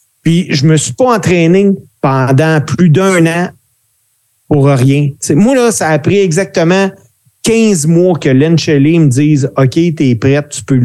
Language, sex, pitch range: French, male, 135-175 Hz